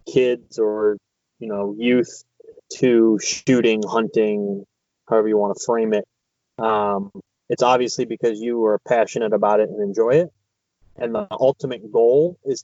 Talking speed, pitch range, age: 145 wpm, 105-125 Hz, 20-39